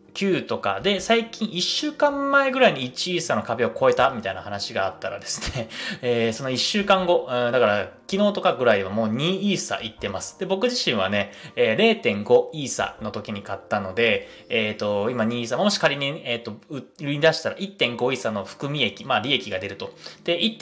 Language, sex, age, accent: Japanese, male, 20-39, native